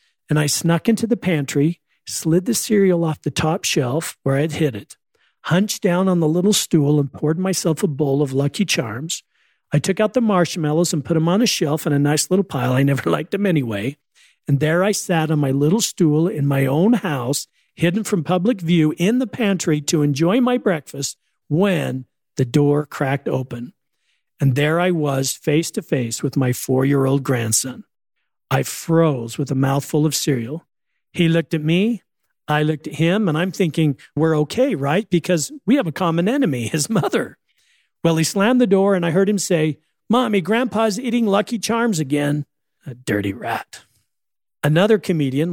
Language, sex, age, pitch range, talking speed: English, male, 50-69, 145-200 Hz, 185 wpm